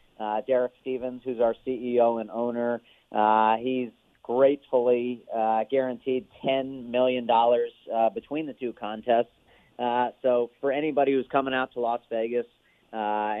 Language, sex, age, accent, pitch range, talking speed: English, male, 40-59, American, 110-125 Hz, 140 wpm